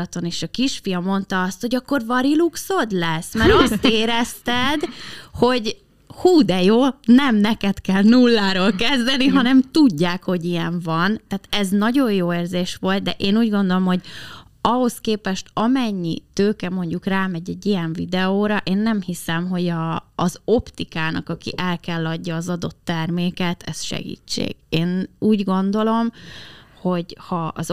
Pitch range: 180-235 Hz